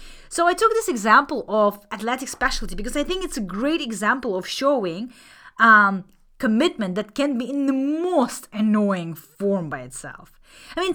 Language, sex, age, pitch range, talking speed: English, female, 20-39, 200-295 Hz, 170 wpm